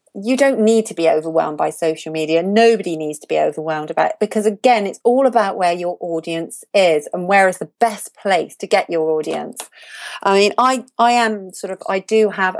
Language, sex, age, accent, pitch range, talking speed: English, female, 40-59, British, 170-210 Hz, 215 wpm